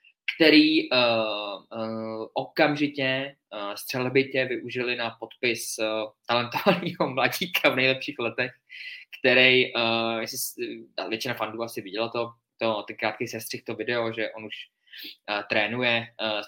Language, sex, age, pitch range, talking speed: Czech, male, 20-39, 110-130 Hz, 125 wpm